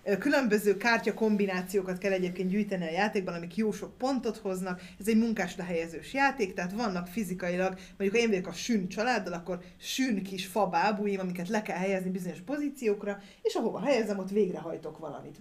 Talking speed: 170 wpm